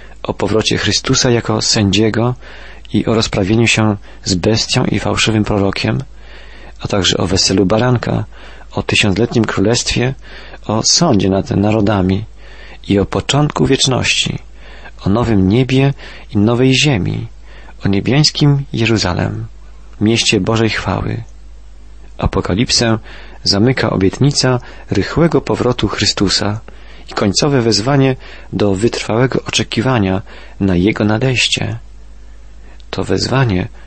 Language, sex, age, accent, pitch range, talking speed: Polish, male, 40-59, native, 95-125 Hz, 105 wpm